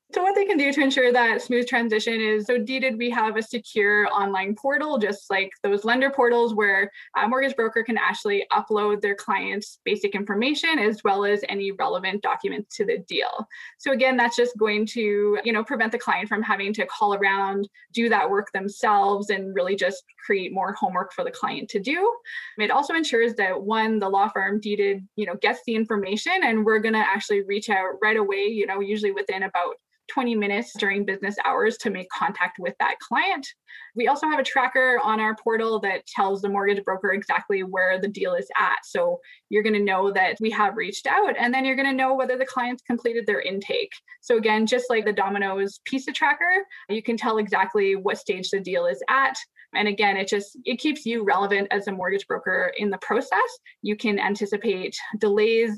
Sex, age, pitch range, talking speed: female, 10-29, 200-260 Hz, 205 wpm